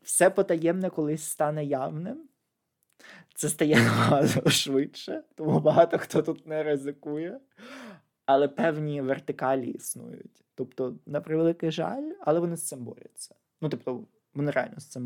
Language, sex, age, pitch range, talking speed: Ukrainian, male, 20-39, 120-155 Hz, 130 wpm